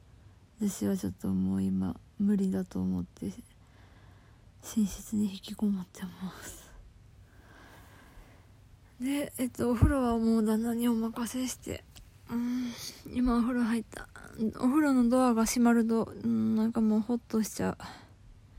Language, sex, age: Japanese, female, 20-39